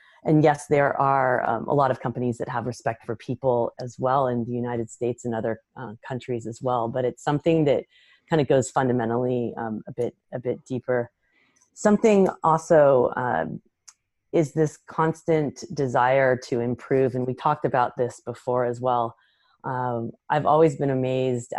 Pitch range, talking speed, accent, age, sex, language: 125-145 Hz, 170 wpm, American, 30-49, female, English